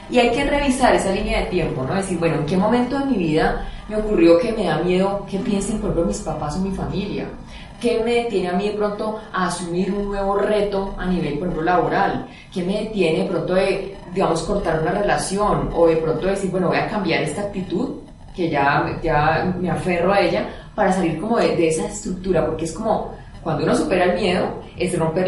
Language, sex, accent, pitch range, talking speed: Spanish, female, Colombian, 165-210 Hz, 220 wpm